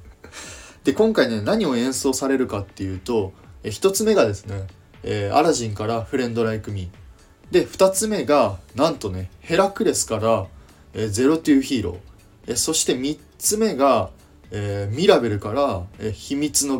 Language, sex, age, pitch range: Japanese, male, 20-39, 95-130 Hz